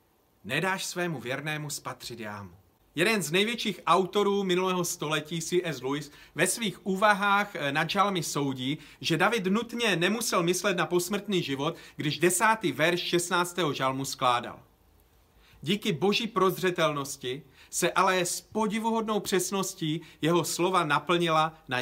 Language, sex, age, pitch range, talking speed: Czech, male, 40-59, 145-195 Hz, 120 wpm